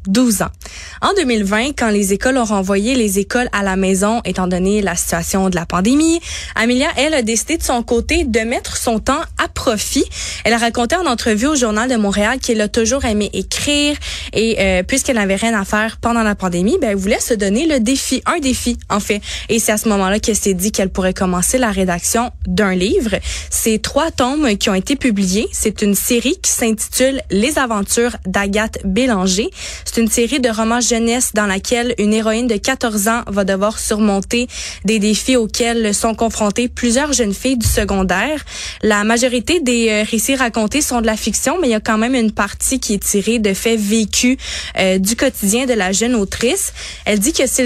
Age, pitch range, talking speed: 20-39, 205-250 Hz, 205 wpm